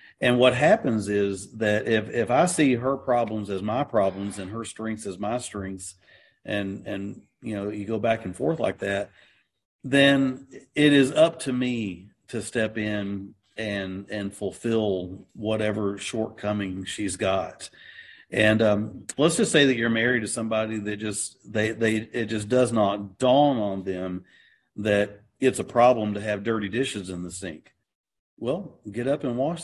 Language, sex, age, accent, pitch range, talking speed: English, male, 50-69, American, 100-125 Hz, 170 wpm